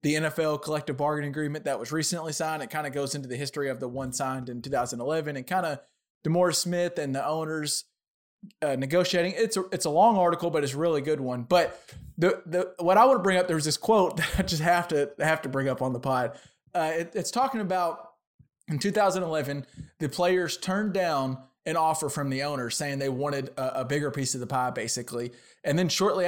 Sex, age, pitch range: male, 20-39, 140-175 Hz